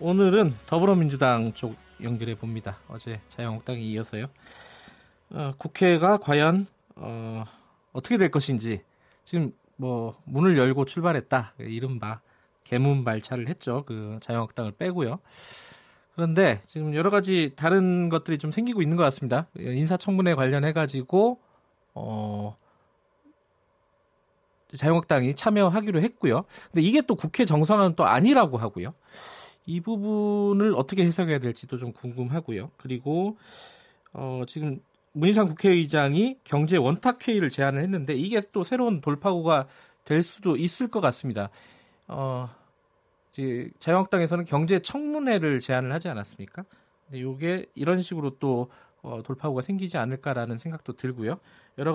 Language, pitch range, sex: Korean, 125-185 Hz, male